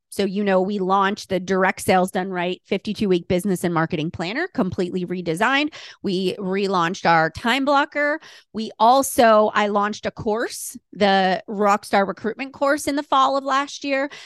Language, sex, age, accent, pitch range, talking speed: English, female, 30-49, American, 185-260 Hz, 160 wpm